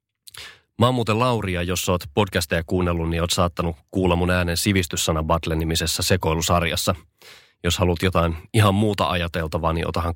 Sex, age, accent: male, 30-49, native